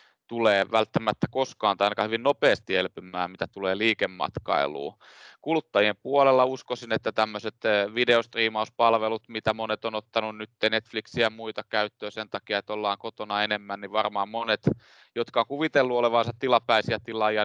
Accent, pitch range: native, 105-120 Hz